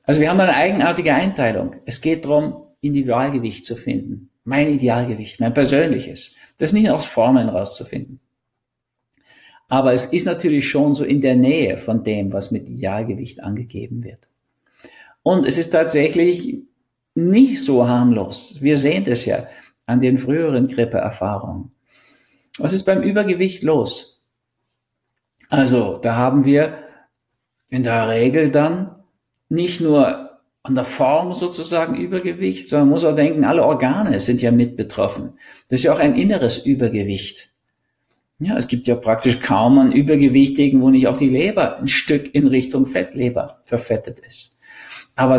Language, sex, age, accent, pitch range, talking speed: German, male, 50-69, German, 120-160 Hz, 145 wpm